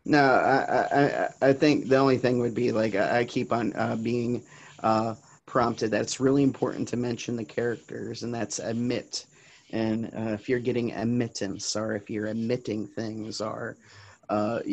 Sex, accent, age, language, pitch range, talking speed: male, American, 30-49, English, 105-115 Hz, 165 wpm